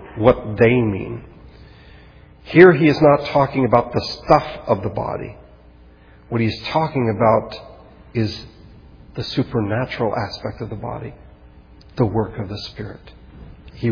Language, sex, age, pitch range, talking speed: English, male, 50-69, 105-130 Hz, 135 wpm